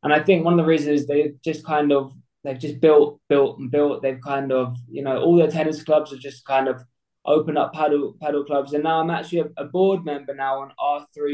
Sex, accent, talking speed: male, British, 245 wpm